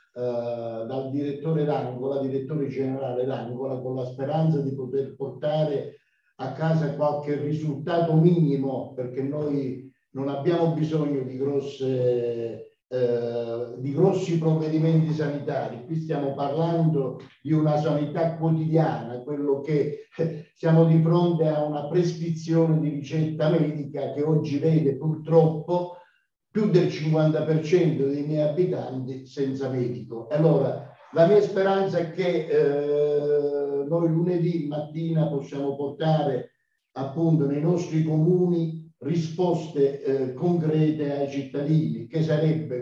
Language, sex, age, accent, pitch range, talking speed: Italian, male, 50-69, native, 135-160 Hz, 120 wpm